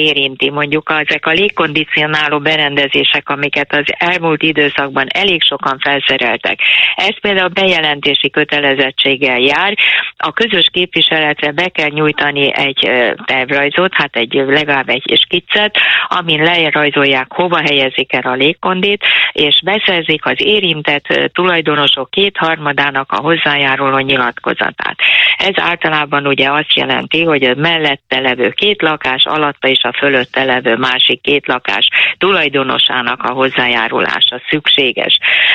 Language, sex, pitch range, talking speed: Hungarian, female, 135-165 Hz, 120 wpm